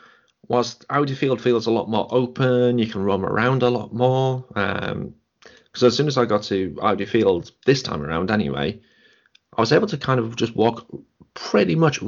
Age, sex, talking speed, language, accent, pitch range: 30-49, male, 195 wpm, English, British, 95-120 Hz